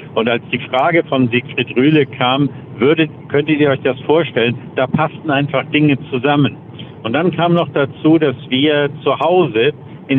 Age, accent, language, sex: 50-69, German, German, male